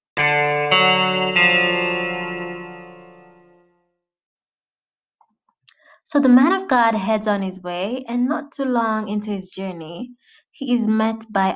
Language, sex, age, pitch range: English, female, 20-39, 190-255 Hz